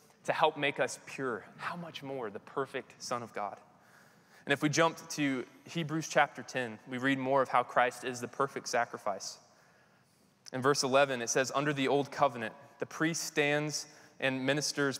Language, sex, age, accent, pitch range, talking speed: English, male, 20-39, American, 125-145 Hz, 180 wpm